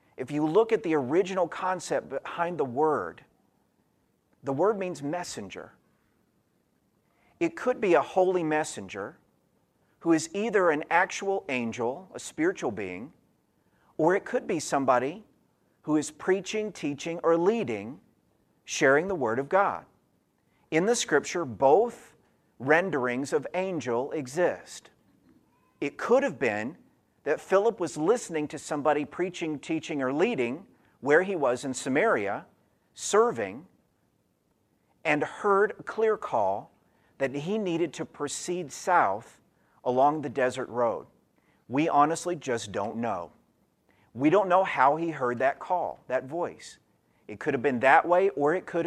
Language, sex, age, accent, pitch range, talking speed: English, male, 50-69, American, 140-185 Hz, 140 wpm